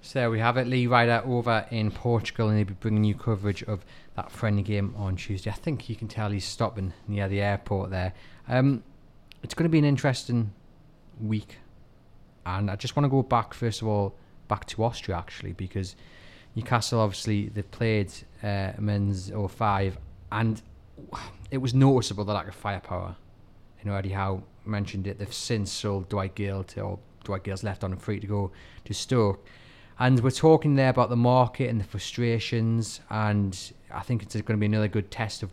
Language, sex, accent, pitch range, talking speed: English, male, British, 100-115 Hz, 195 wpm